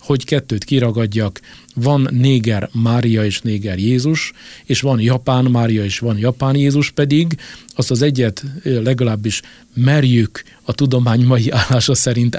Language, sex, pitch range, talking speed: Hungarian, male, 110-135 Hz, 135 wpm